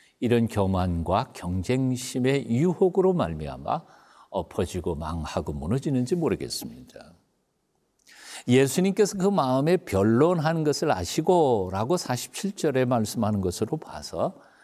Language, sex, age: Korean, male, 60-79